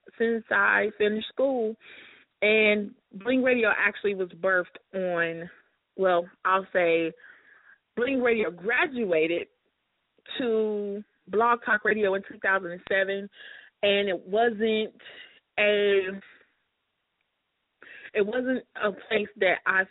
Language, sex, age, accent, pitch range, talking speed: English, female, 20-39, American, 180-220 Hz, 110 wpm